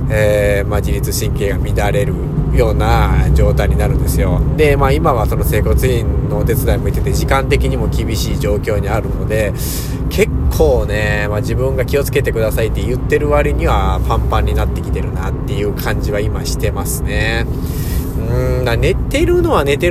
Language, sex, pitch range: Japanese, male, 85-120 Hz